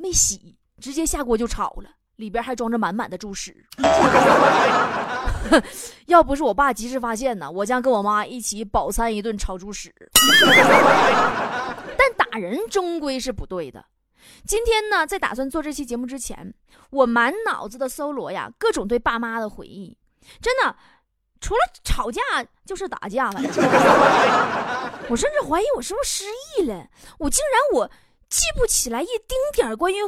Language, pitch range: Chinese, 230-390 Hz